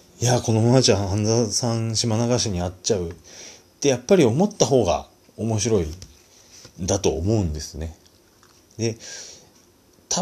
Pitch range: 80-105 Hz